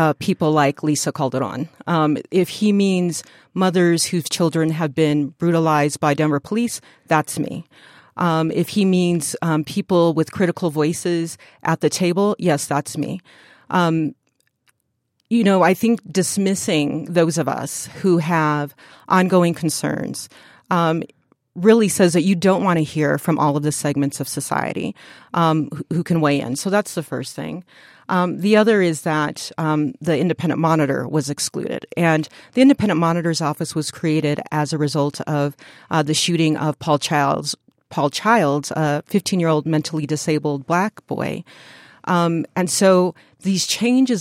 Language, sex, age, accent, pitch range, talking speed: English, female, 40-59, American, 150-180 Hz, 160 wpm